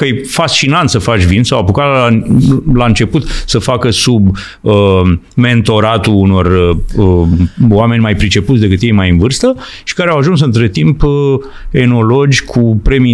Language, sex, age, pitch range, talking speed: Romanian, male, 40-59, 100-125 Hz, 165 wpm